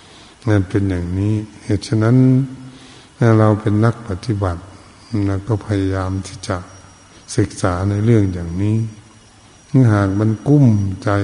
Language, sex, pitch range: Thai, male, 100-120 Hz